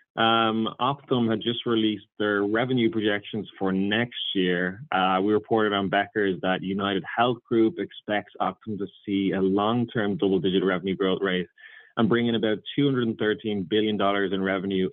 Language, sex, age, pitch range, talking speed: English, male, 20-39, 95-115 Hz, 155 wpm